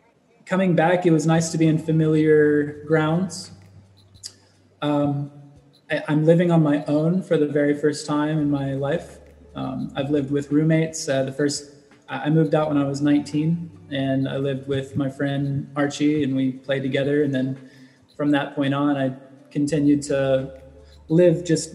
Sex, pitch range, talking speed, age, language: male, 130-150 Hz, 170 wpm, 20-39, English